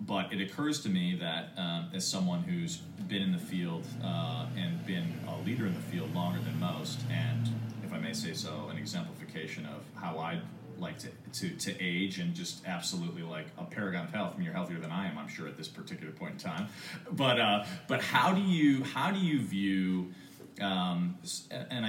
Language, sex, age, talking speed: English, male, 30-49, 210 wpm